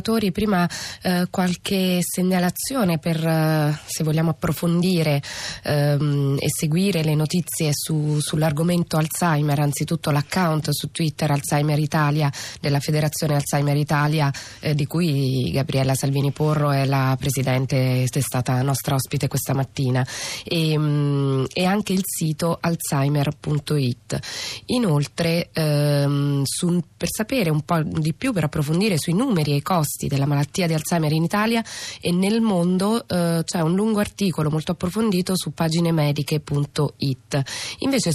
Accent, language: native, Italian